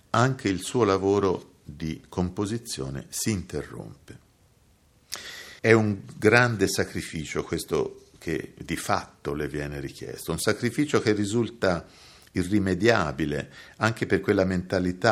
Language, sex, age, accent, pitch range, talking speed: Italian, male, 50-69, native, 80-105 Hz, 110 wpm